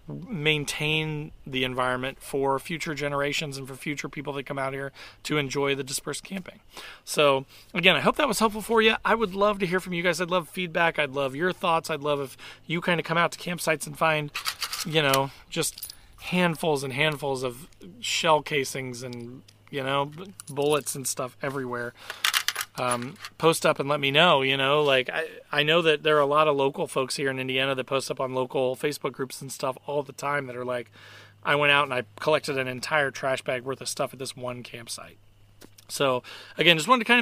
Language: English